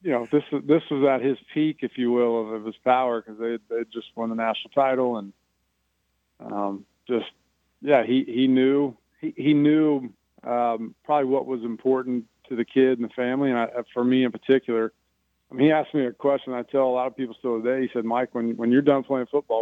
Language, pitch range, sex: English, 110-130 Hz, male